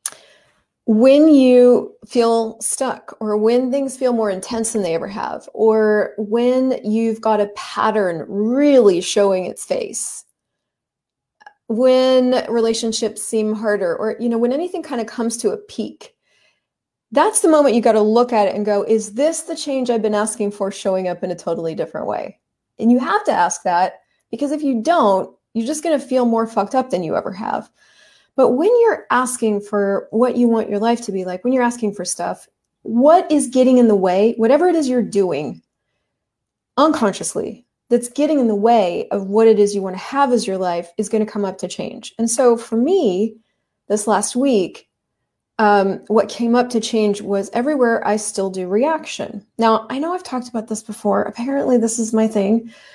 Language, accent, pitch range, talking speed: English, American, 210-255 Hz, 195 wpm